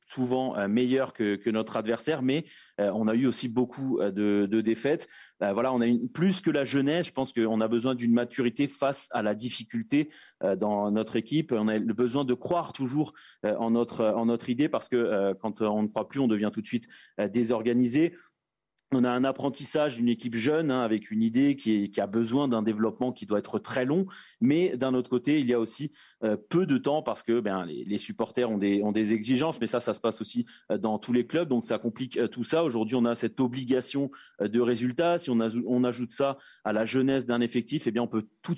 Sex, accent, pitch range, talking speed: male, French, 110-135 Hz, 245 wpm